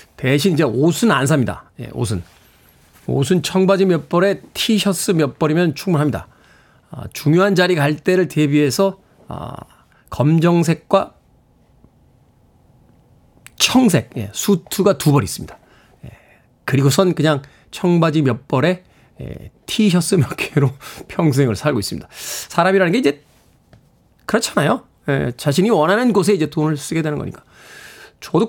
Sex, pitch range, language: male, 145-200 Hz, Korean